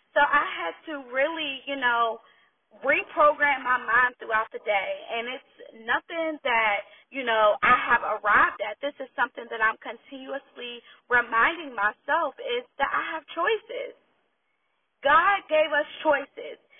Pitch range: 245-320 Hz